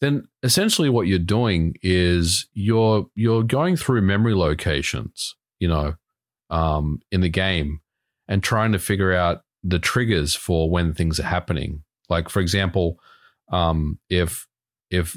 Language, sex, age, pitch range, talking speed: English, male, 40-59, 80-100 Hz, 140 wpm